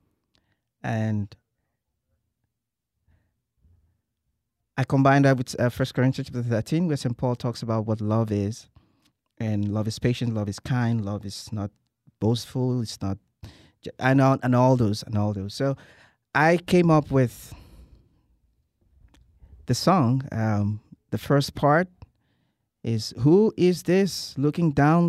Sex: male